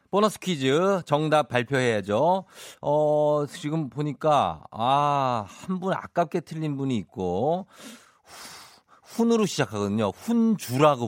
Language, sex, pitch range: Korean, male, 105-165 Hz